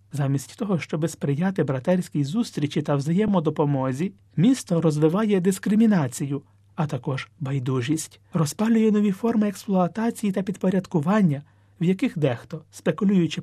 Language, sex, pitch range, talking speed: Ukrainian, male, 145-195 Hz, 105 wpm